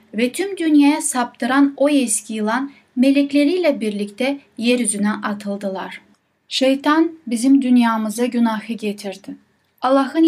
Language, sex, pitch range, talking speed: Turkish, female, 220-280 Hz, 100 wpm